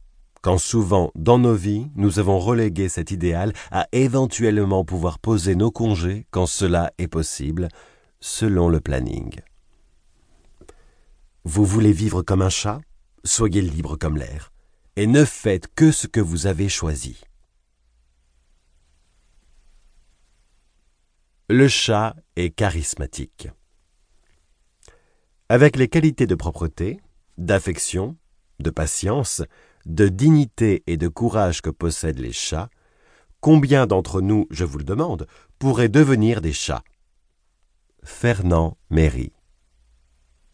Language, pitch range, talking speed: French, 75-105 Hz, 110 wpm